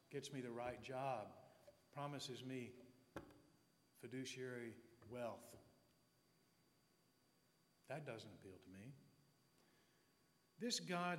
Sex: male